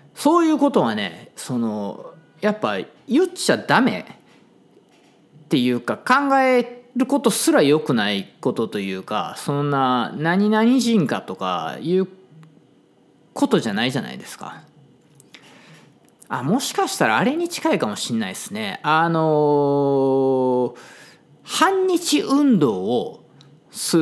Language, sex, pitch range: Japanese, male, 145-205 Hz